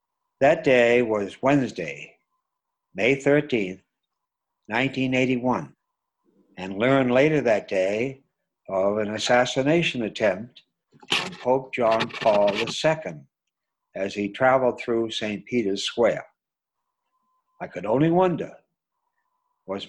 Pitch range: 110-160 Hz